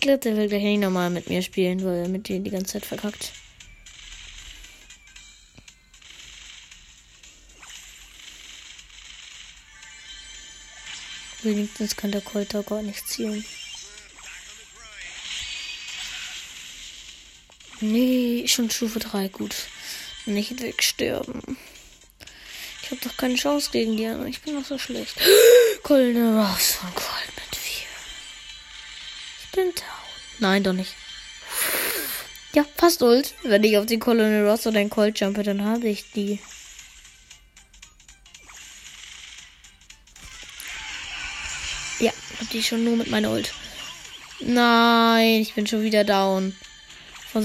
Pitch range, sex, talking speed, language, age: 195-235 Hz, female, 100 wpm, German, 20-39